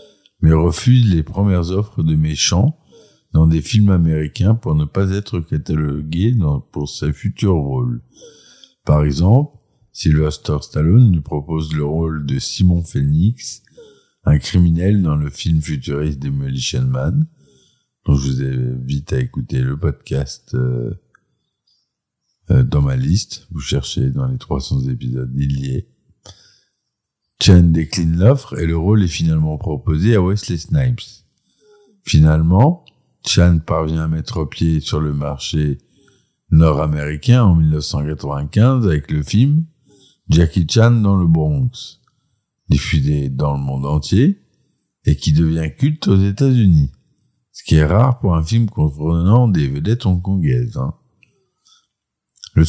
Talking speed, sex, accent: 135 wpm, male, French